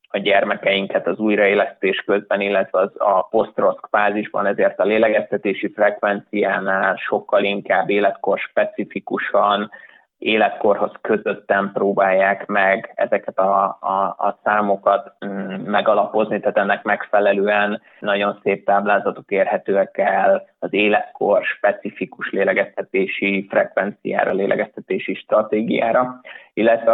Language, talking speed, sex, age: Hungarian, 95 wpm, male, 20-39